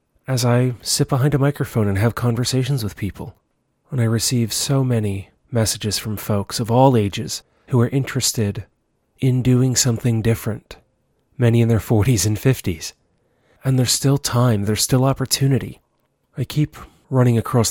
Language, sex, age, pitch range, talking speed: English, male, 30-49, 105-130 Hz, 155 wpm